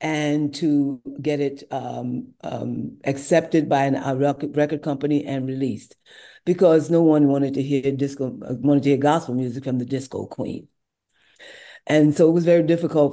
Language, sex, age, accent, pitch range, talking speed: English, female, 50-69, American, 130-150 Hz, 165 wpm